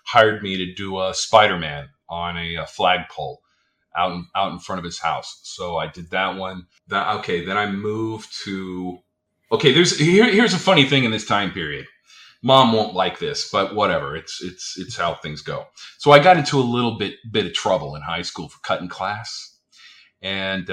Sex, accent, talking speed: male, American, 195 wpm